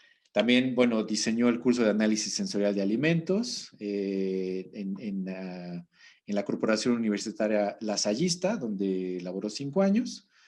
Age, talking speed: 40-59, 130 wpm